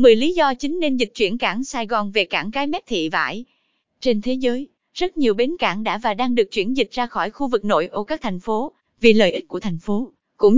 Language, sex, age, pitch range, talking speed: Vietnamese, female, 20-39, 215-285 Hz, 255 wpm